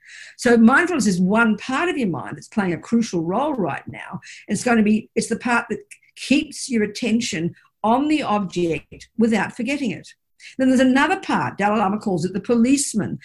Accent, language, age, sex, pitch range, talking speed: Australian, English, 50-69, female, 175-230 Hz, 190 wpm